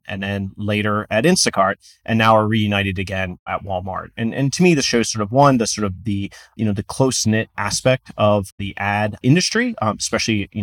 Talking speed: 215 wpm